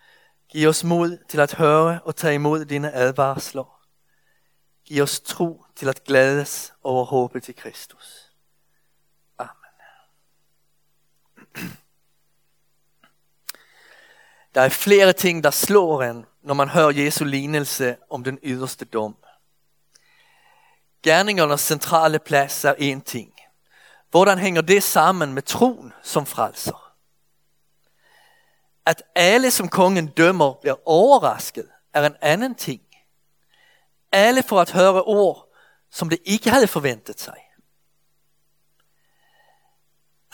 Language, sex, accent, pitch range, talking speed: Danish, male, Swedish, 135-170 Hz, 110 wpm